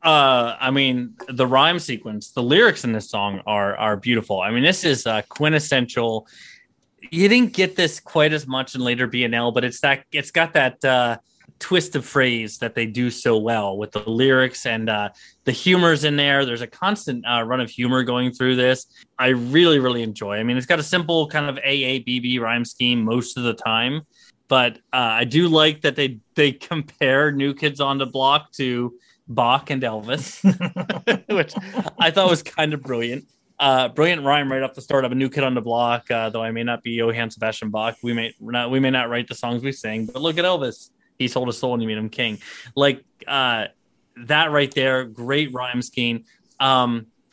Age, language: 20-39, English